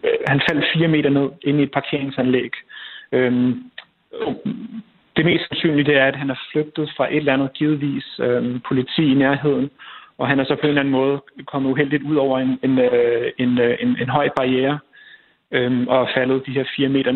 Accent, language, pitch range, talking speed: native, Danish, 125-145 Hz, 205 wpm